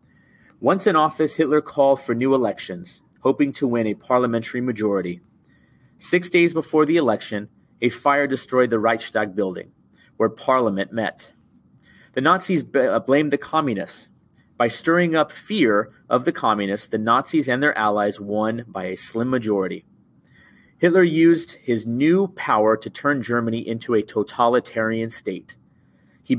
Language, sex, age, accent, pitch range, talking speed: English, male, 30-49, American, 115-150 Hz, 145 wpm